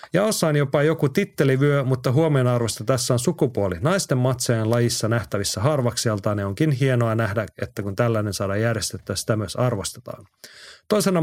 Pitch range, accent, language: 115-145 Hz, native, Finnish